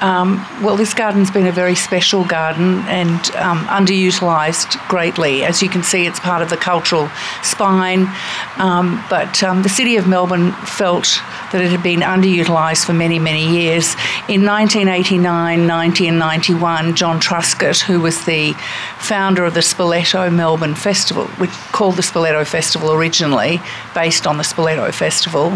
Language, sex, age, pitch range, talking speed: English, female, 50-69, 165-185 Hz, 155 wpm